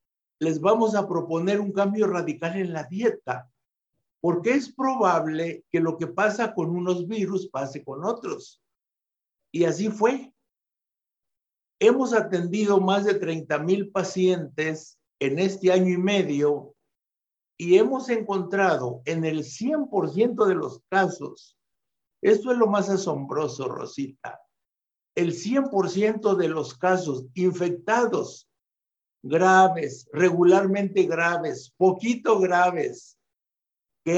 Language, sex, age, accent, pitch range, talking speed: Spanish, male, 60-79, Mexican, 165-210 Hz, 115 wpm